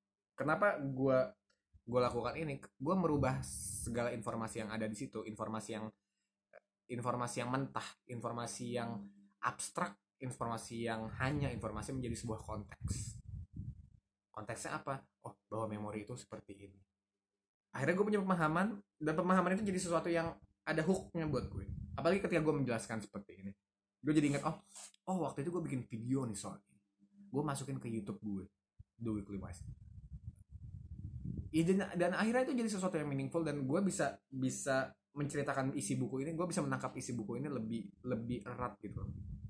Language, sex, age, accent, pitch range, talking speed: Indonesian, male, 20-39, native, 100-135 Hz, 155 wpm